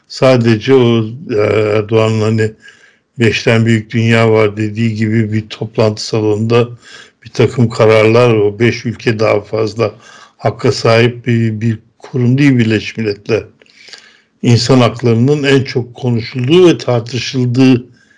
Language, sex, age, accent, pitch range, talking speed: Turkish, male, 60-79, native, 110-125 Hz, 120 wpm